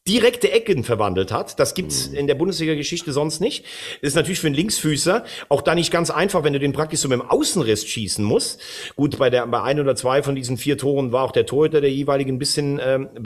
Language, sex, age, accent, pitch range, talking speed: German, male, 40-59, German, 125-165 Hz, 240 wpm